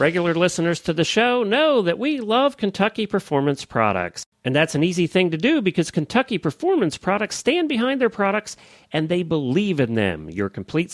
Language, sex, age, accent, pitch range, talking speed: English, male, 40-59, American, 135-225 Hz, 185 wpm